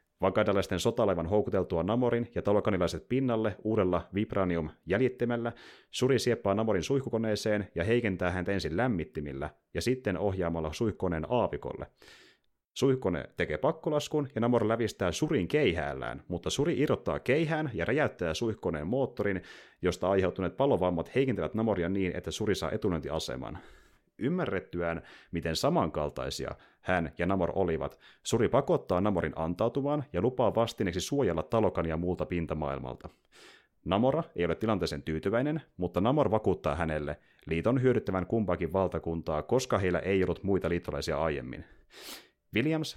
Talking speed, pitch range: 125 wpm, 85-115 Hz